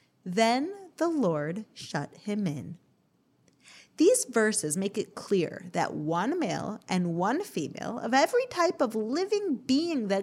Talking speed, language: 140 wpm, English